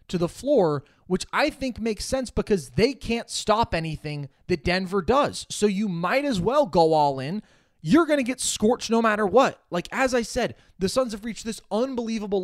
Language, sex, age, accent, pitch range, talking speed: English, male, 20-39, American, 160-210 Hz, 205 wpm